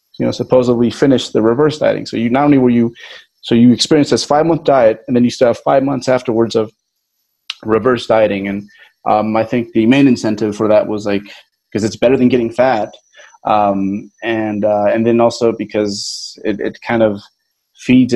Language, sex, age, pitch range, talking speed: English, male, 30-49, 115-140 Hz, 200 wpm